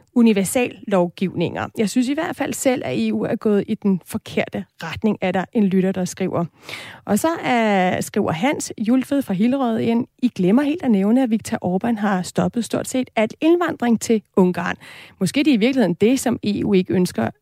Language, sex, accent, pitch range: Danish, female, native, 200-255 Hz